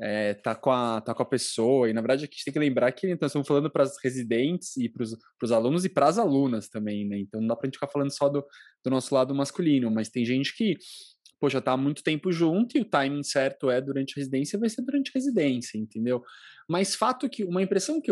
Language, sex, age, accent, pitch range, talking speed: Portuguese, male, 20-39, Brazilian, 120-155 Hz, 260 wpm